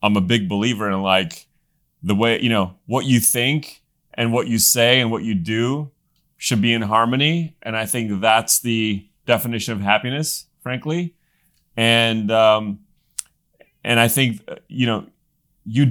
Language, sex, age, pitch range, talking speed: English, male, 30-49, 100-125 Hz, 160 wpm